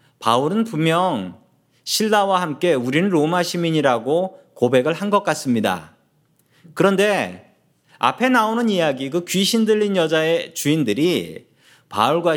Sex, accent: male, native